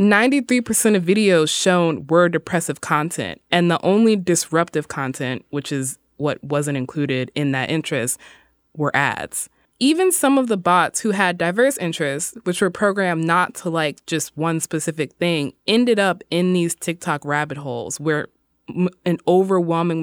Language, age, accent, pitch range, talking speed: English, 20-39, American, 145-190 Hz, 150 wpm